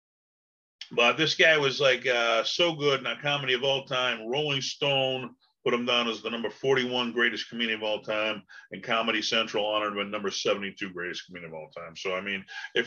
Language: English